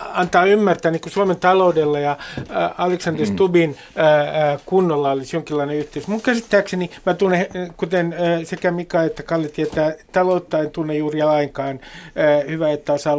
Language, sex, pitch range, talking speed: Finnish, male, 145-185 Hz, 140 wpm